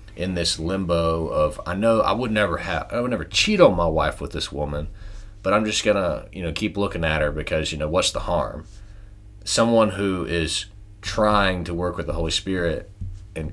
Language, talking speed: English, 215 wpm